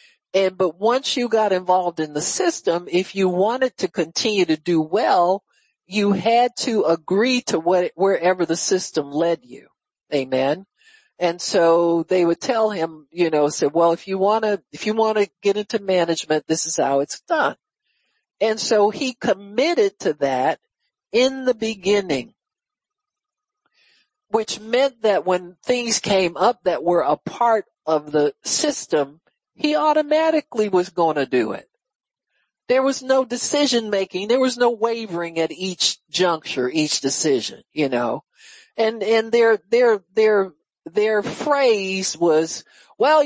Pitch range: 170-245 Hz